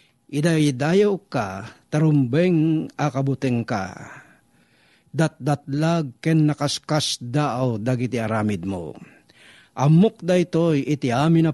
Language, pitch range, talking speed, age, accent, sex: Filipino, 130-155 Hz, 95 wpm, 50-69, native, male